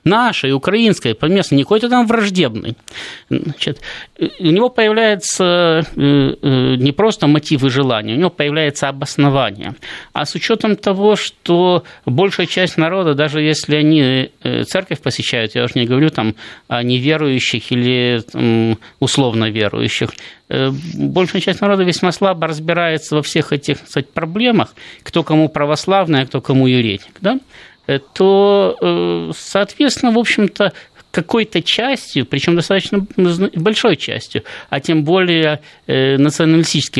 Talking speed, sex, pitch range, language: 125 wpm, male, 135-185 Hz, Russian